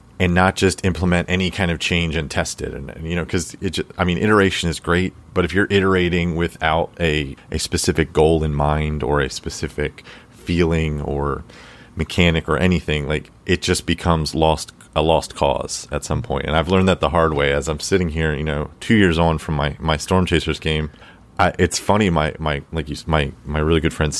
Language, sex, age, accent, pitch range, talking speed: English, male, 30-49, American, 75-90 Hz, 210 wpm